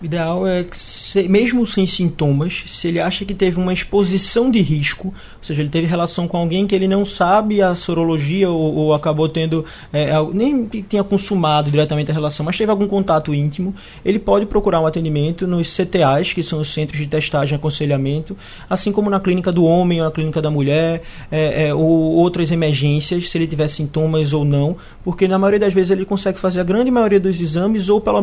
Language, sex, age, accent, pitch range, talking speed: Portuguese, male, 20-39, Brazilian, 155-190 Hz, 210 wpm